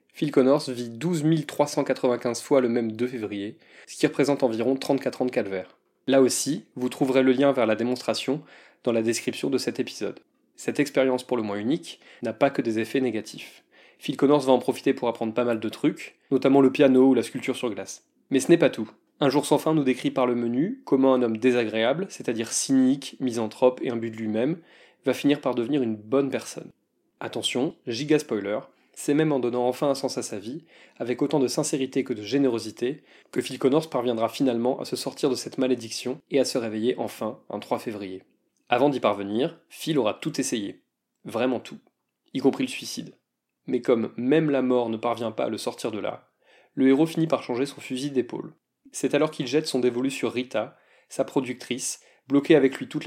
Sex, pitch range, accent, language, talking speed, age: male, 120-140 Hz, French, French, 210 wpm, 20-39